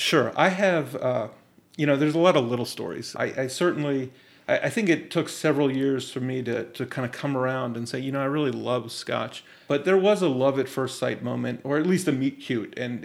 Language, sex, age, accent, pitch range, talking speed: English, male, 30-49, American, 125-150 Hz, 250 wpm